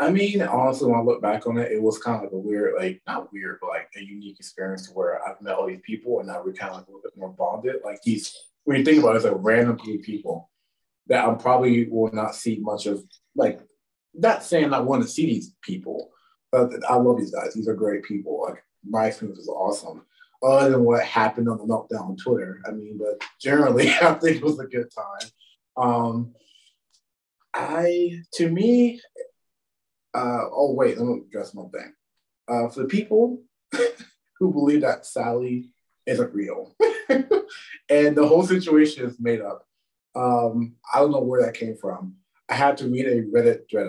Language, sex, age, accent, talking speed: English, male, 20-39, American, 200 wpm